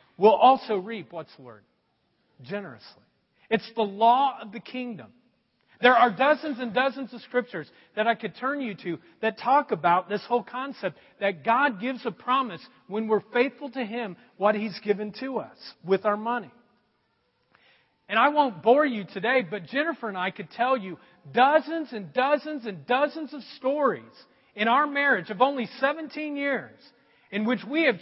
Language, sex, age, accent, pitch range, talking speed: English, male, 40-59, American, 225-300 Hz, 175 wpm